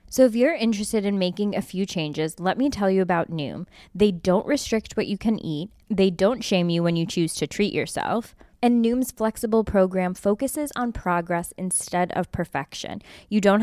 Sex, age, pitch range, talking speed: female, 20-39, 175-225 Hz, 195 wpm